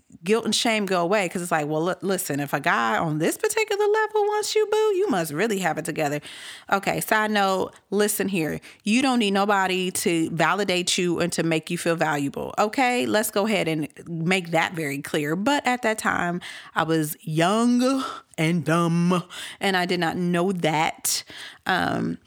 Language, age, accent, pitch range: English, 40-59, American, 160-225 Hz